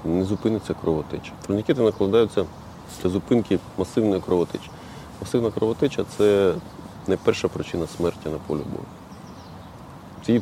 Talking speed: 120 wpm